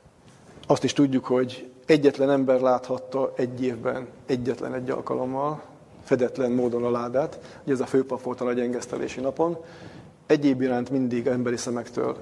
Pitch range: 125-135 Hz